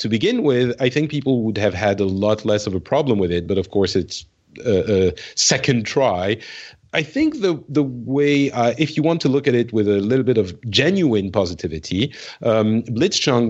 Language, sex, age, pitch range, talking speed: English, male, 40-59, 105-135 Hz, 210 wpm